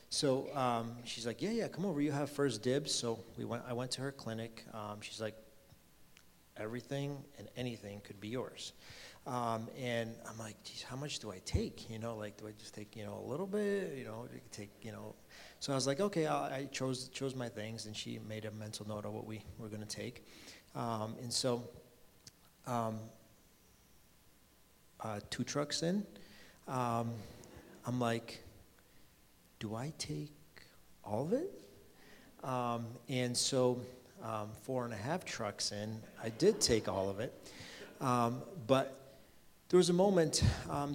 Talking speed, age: 170 wpm, 40-59